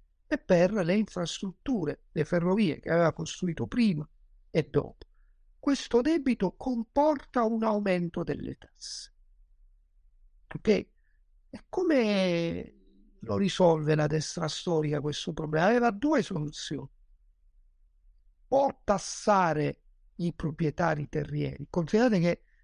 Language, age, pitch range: Italian, 50-69, 145-205 Hz